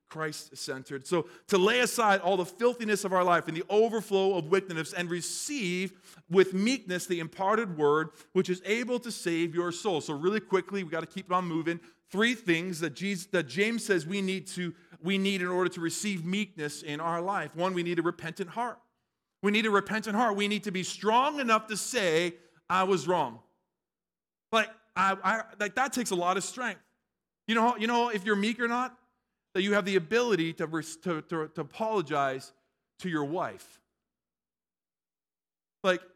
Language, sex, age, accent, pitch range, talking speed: English, male, 40-59, American, 165-210 Hz, 190 wpm